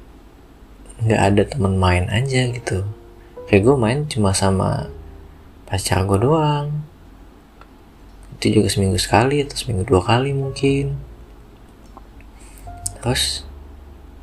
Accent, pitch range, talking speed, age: native, 95-115 Hz, 100 wpm, 20-39